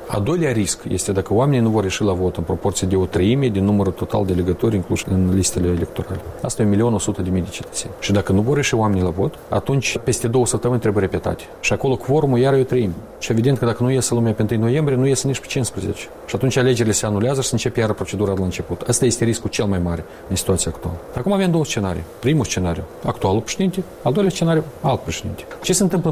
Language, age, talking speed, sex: Romanian, 40-59, 240 wpm, male